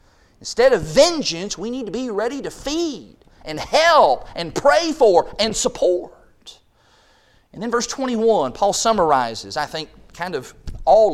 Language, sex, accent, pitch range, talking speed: English, male, American, 145-225 Hz, 150 wpm